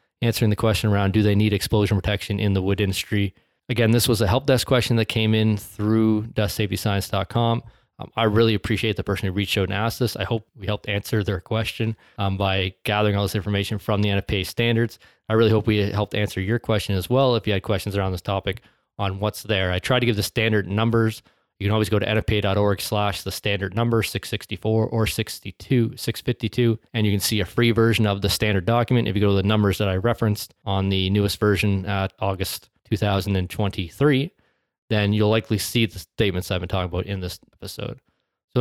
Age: 20-39